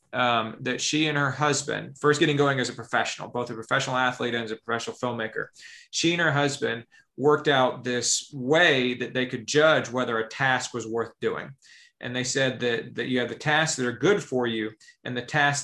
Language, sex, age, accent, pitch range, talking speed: English, male, 30-49, American, 120-140 Hz, 215 wpm